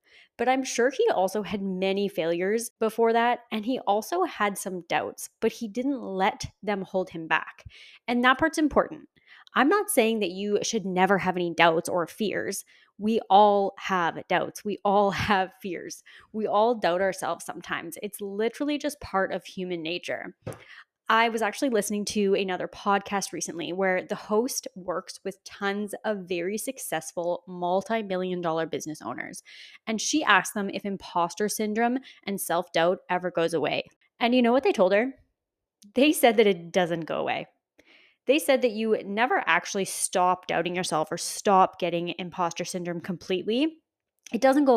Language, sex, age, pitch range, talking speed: English, female, 20-39, 185-230 Hz, 170 wpm